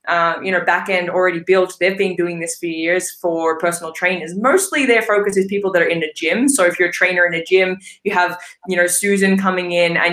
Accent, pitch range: Australian, 170-195 Hz